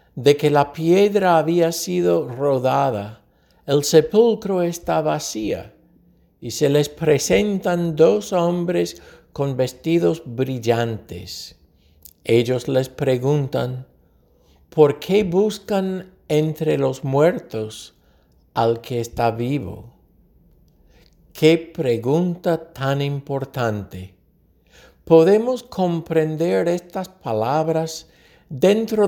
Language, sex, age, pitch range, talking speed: English, male, 60-79, 115-175 Hz, 85 wpm